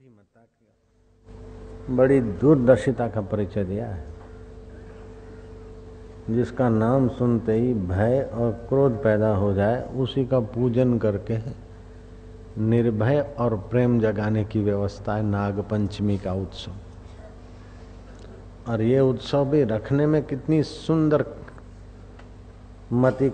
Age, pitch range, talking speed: 50-69, 95-115 Hz, 100 wpm